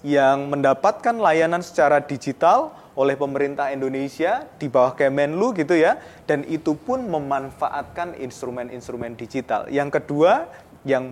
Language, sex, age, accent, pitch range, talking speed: Indonesian, male, 20-39, native, 140-185 Hz, 120 wpm